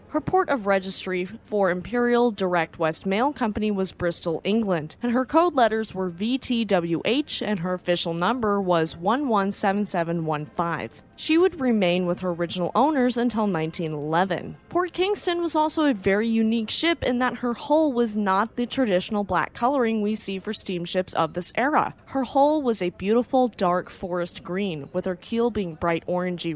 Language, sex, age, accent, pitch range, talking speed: English, female, 20-39, American, 180-245 Hz, 165 wpm